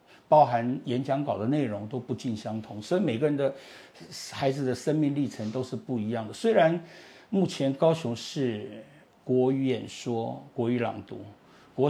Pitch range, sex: 120-155 Hz, male